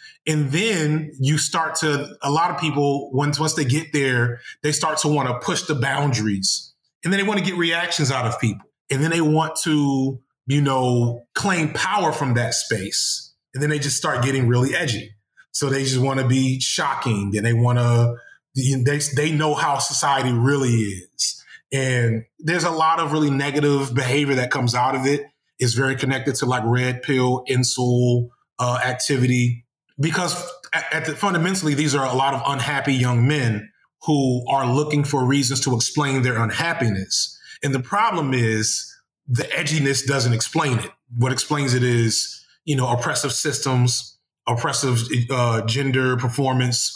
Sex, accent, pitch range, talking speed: male, American, 120-150 Hz, 170 wpm